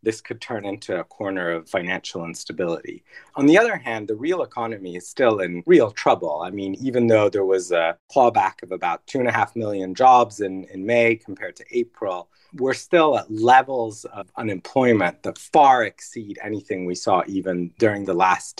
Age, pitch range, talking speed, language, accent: 30-49, 95-120 Hz, 190 wpm, English, American